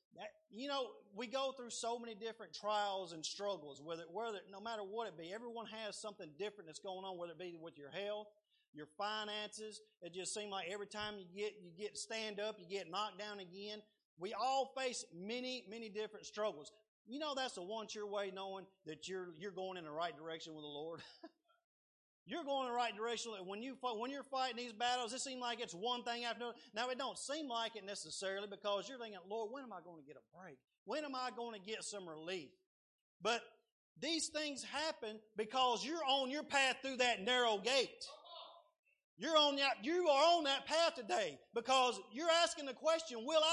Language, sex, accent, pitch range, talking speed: English, male, American, 210-280 Hz, 205 wpm